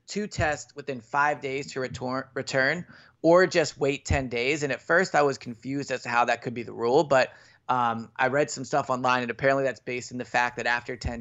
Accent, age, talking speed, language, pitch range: American, 30-49, 235 wpm, English, 120-145 Hz